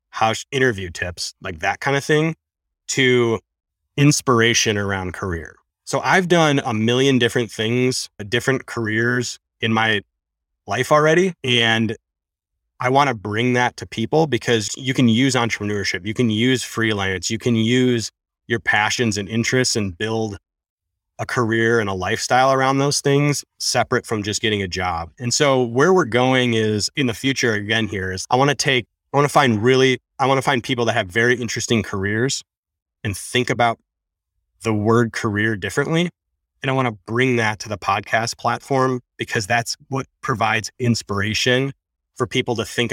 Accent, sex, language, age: American, male, English, 30-49